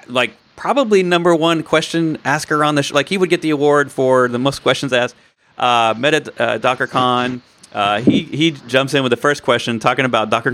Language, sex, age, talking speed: English, male, 30-49, 205 wpm